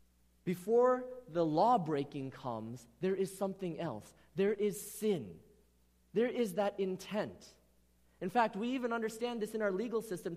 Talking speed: 150 wpm